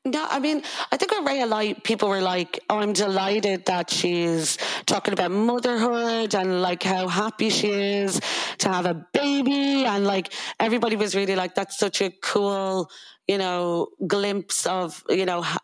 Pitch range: 175-210 Hz